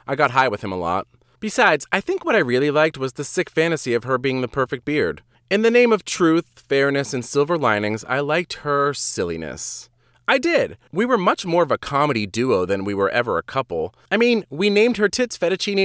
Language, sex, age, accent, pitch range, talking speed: English, male, 30-49, American, 120-190 Hz, 225 wpm